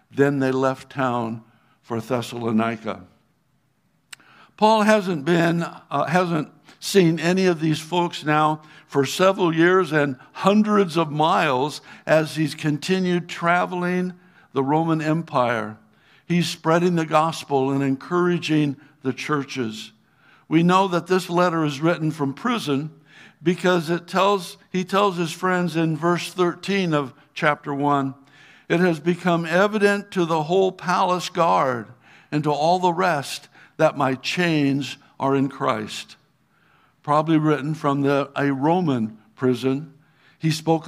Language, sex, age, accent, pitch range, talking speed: English, male, 60-79, American, 140-175 Hz, 130 wpm